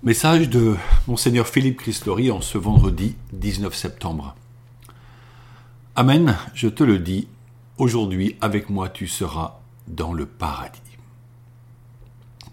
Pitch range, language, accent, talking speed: 110-125 Hz, French, French, 120 wpm